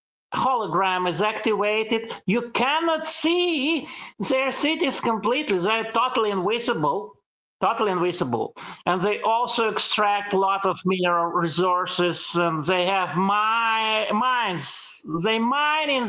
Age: 50-69